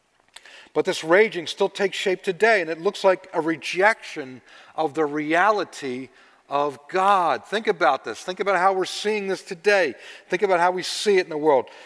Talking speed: 185 wpm